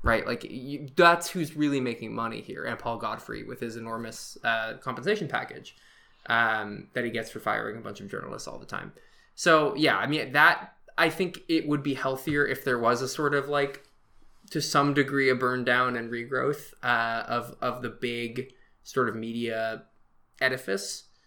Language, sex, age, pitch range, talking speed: English, male, 20-39, 115-155 Hz, 185 wpm